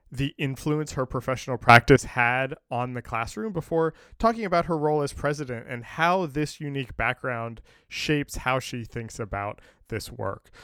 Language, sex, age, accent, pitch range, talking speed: English, male, 20-39, American, 120-150 Hz, 160 wpm